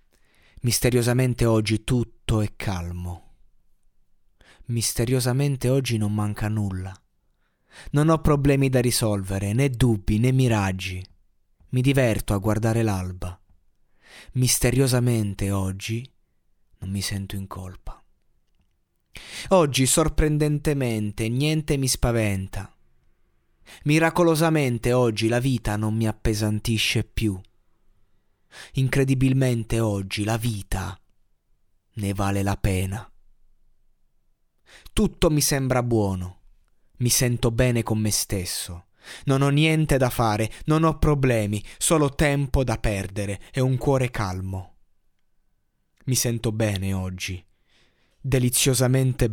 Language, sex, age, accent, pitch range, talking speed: Italian, male, 30-49, native, 95-130 Hz, 100 wpm